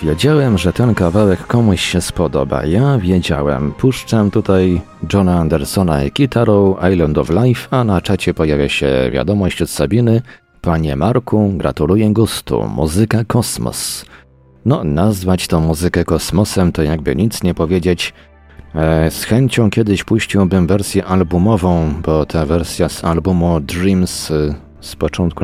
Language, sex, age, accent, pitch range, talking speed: Polish, male, 40-59, native, 80-100 Hz, 130 wpm